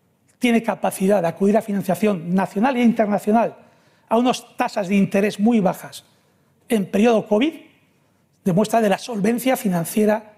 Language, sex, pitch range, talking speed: Spanish, male, 170-220 Hz, 140 wpm